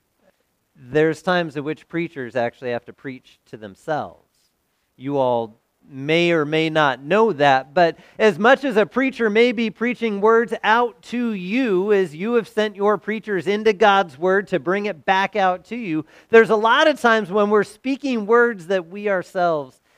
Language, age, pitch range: English, 40-59, 120-195 Hz